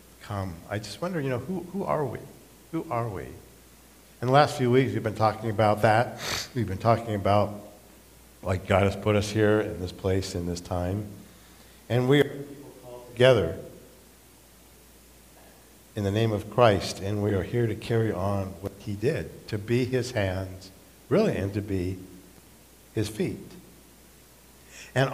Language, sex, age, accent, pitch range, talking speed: English, male, 50-69, American, 90-115 Hz, 165 wpm